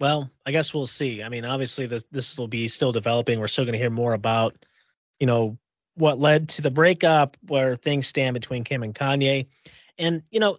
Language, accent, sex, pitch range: English, American, male, 135-200 Hz